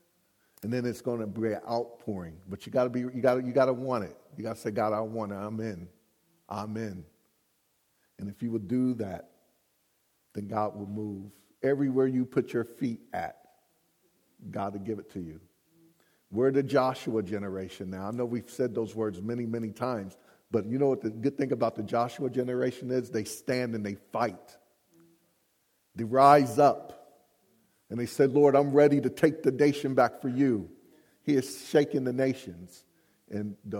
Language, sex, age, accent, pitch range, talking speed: English, male, 50-69, American, 110-130 Hz, 185 wpm